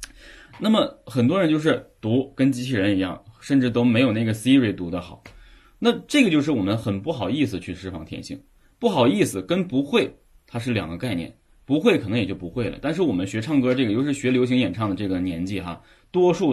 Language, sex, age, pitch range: Chinese, male, 20-39, 95-135 Hz